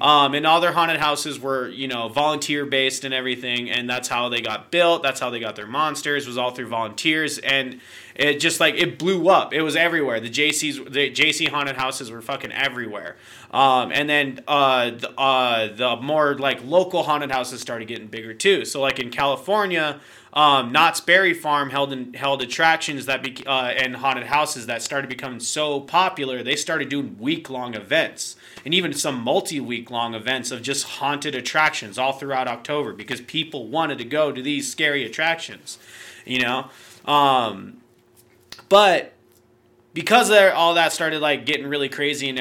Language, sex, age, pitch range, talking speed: English, male, 30-49, 125-155 Hz, 185 wpm